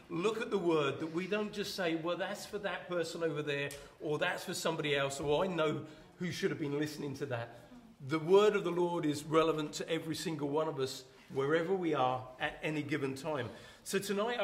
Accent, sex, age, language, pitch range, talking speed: British, male, 40-59, English, 150-195 Hz, 220 wpm